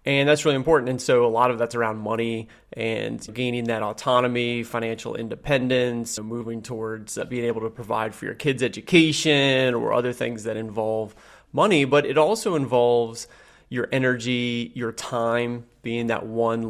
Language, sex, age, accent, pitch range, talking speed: English, male, 30-49, American, 115-135 Hz, 160 wpm